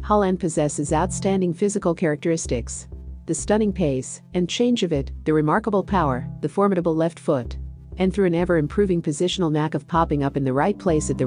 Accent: American